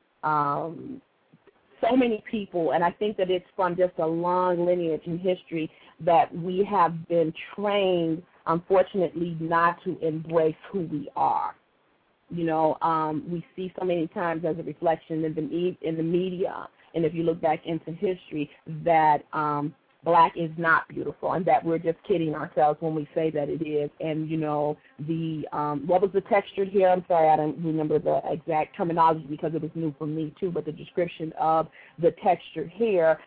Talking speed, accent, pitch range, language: 180 wpm, American, 155-180 Hz, English